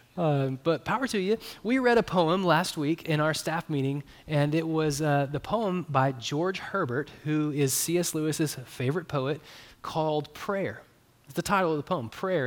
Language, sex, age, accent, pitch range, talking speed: English, male, 20-39, American, 135-185 Hz, 190 wpm